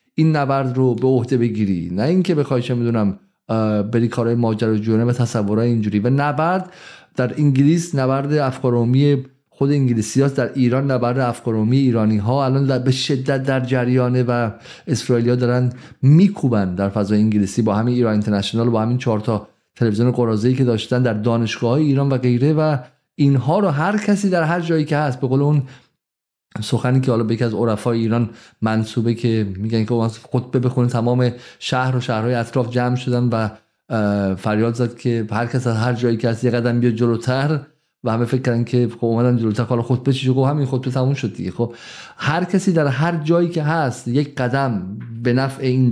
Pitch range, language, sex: 115-135 Hz, Persian, male